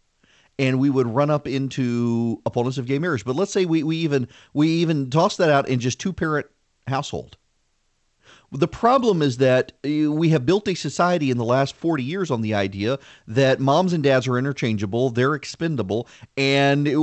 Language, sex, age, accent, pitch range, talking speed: English, male, 40-59, American, 130-170 Hz, 180 wpm